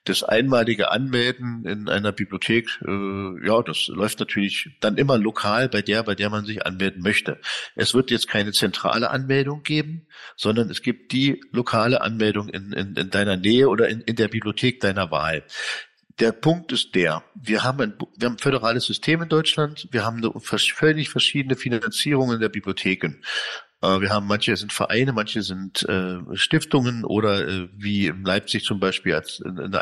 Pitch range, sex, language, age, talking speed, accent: 100-120 Hz, male, German, 50-69, 175 wpm, German